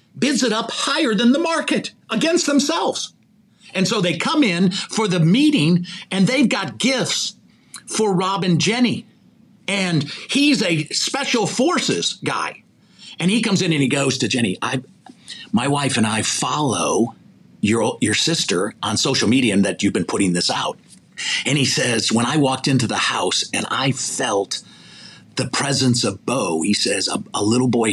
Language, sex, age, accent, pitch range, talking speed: English, male, 50-69, American, 130-215 Hz, 175 wpm